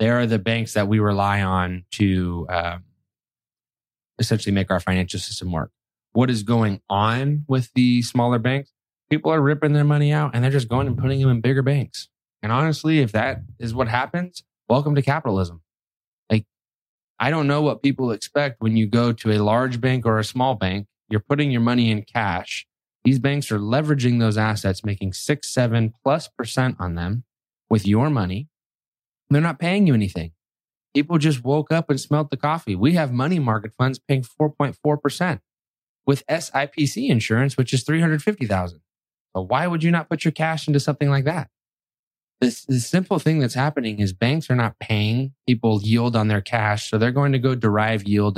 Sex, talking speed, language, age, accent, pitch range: male, 185 wpm, English, 20-39, American, 105-140 Hz